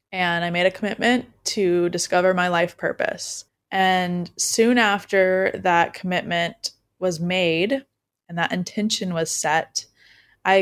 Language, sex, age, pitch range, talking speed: English, female, 20-39, 170-190 Hz, 130 wpm